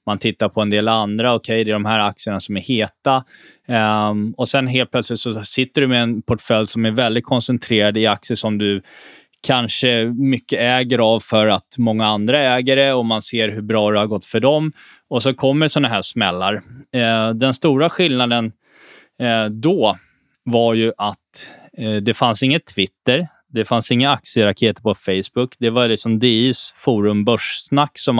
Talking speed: 170 wpm